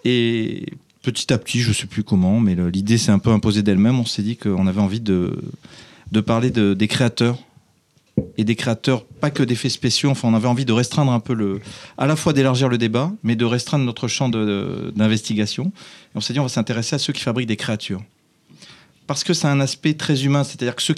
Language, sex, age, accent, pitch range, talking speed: French, male, 40-59, French, 110-135 Hz, 230 wpm